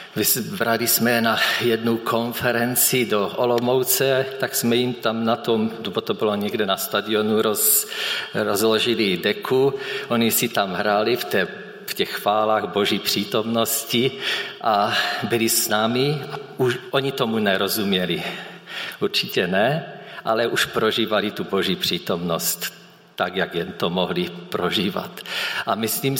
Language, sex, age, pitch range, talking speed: Czech, male, 50-69, 110-135 Hz, 130 wpm